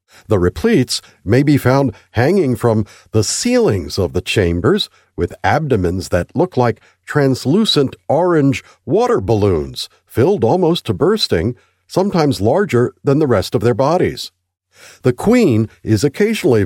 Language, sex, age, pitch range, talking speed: English, male, 50-69, 95-155 Hz, 135 wpm